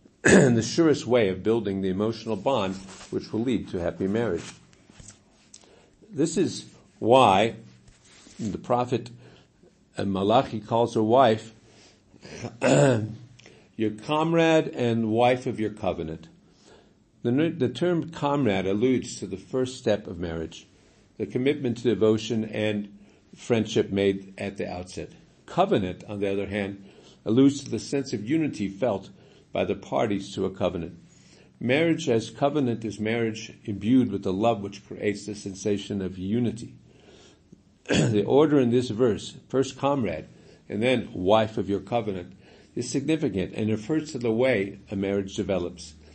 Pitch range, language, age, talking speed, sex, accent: 95-125 Hz, English, 50-69, 140 wpm, male, American